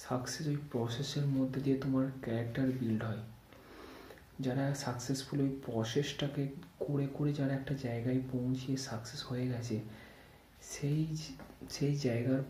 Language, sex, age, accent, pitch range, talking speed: Bengali, male, 30-49, native, 120-145 Hz, 115 wpm